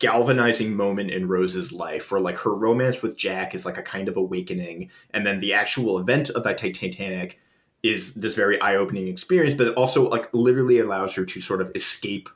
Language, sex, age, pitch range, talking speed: English, male, 20-39, 95-125 Hz, 205 wpm